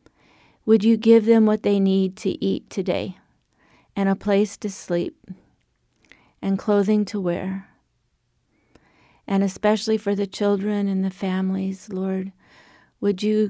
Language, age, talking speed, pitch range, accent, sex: English, 40-59, 135 wpm, 180-205 Hz, American, female